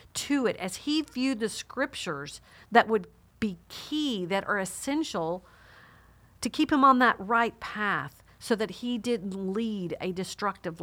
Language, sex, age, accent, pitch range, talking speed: English, female, 50-69, American, 185-250 Hz, 155 wpm